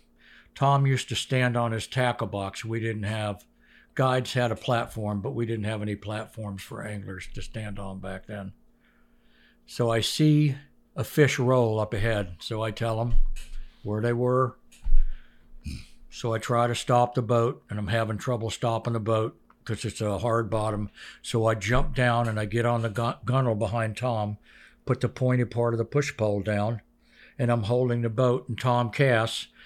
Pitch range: 110-135 Hz